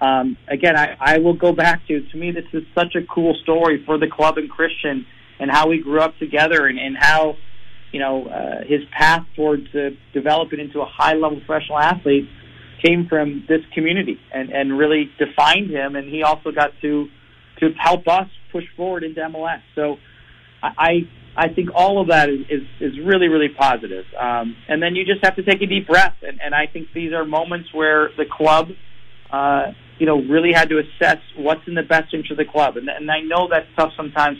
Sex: male